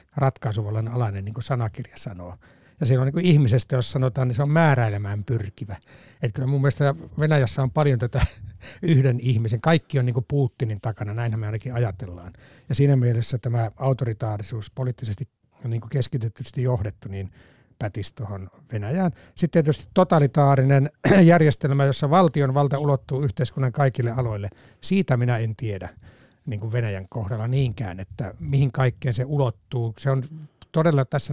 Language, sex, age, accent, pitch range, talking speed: Finnish, male, 60-79, native, 115-140 Hz, 155 wpm